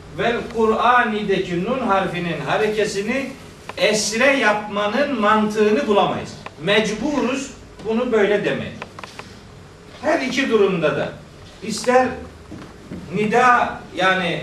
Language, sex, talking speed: Turkish, male, 85 wpm